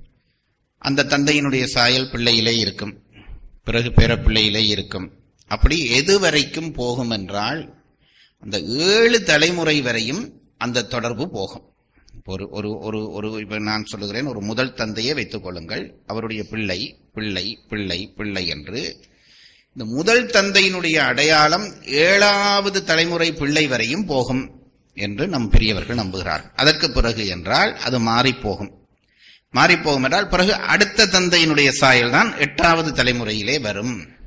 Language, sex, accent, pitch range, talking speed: Tamil, male, native, 105-155 Hz, 115 wpm